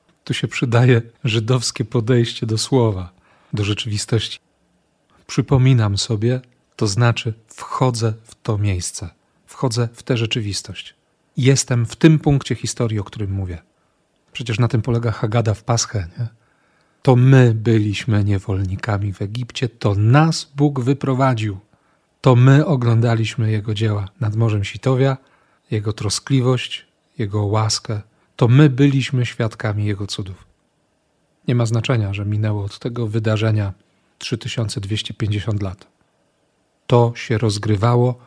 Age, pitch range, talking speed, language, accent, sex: 40-59, 110-130 Hz, 120 wpm, Polish, native, male